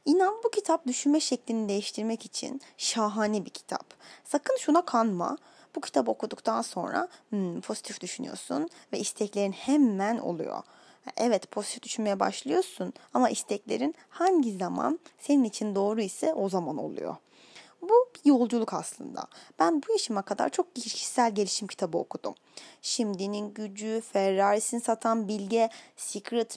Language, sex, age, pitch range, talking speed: Turkish, female, 20-39, 210-290 Hz, 125 wpm